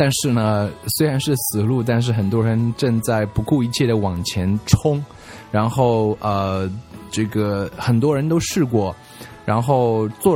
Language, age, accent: Chinese, 20-39, native